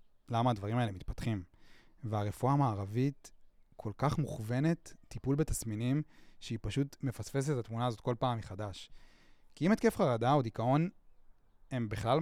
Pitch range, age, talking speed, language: 105-135 Hz, 30-49, 135 wpm, Hebrew